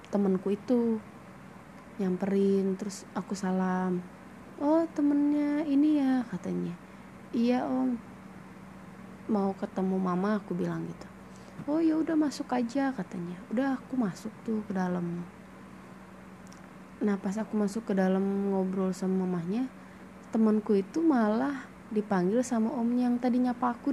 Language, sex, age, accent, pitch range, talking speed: Indonesian, female, 20-39, native, 195-245 Hz, 125 wpm